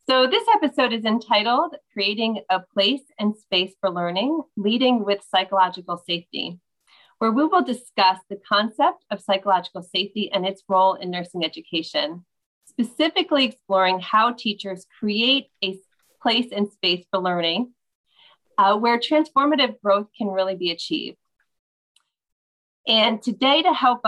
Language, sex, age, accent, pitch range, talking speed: English, female, 30-49, American, 190-255 Hz, 135 wpm